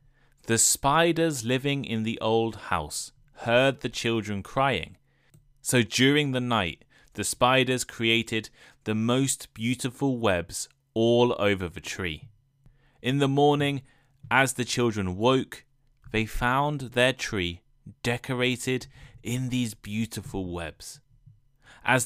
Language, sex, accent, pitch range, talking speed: English, male, British, 105-135 Hz, 115 wpm